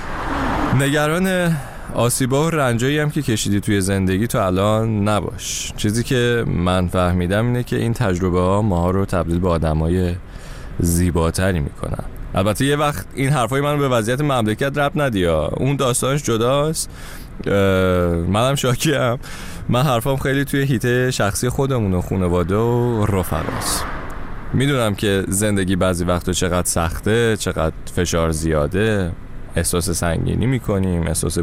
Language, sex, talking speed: Persian, male, 135 wpm